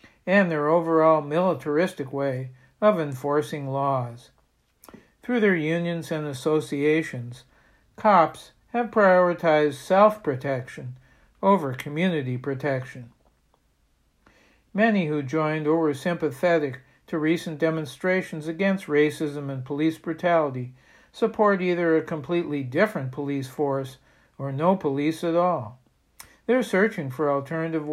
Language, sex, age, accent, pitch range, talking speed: English, male, 60-79, American, 140-175 Hz, 105 wpm